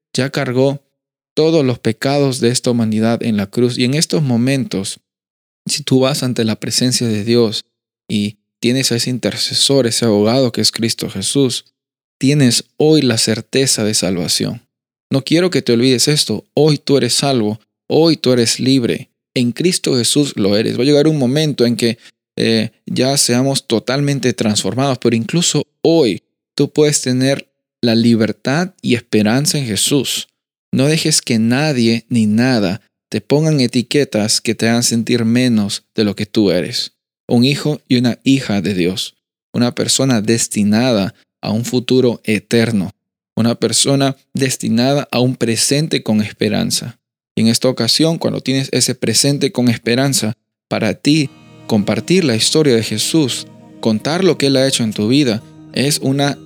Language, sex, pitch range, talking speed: Spanish, male, 110-140 Hz, 160 wpm